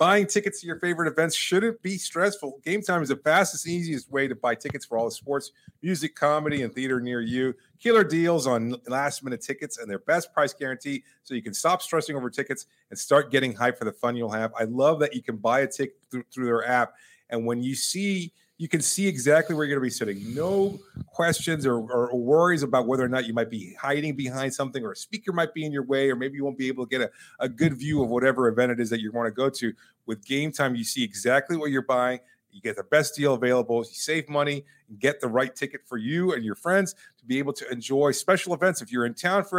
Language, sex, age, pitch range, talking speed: English, male, 30-49, 125-170 Hz, 255 wpm